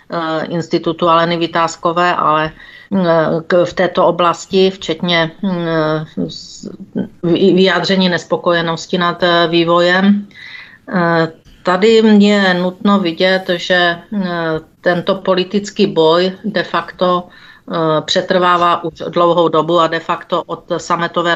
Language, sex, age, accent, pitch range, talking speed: Czech, female, 40-59, native, 160-180 Hz, 85 wpm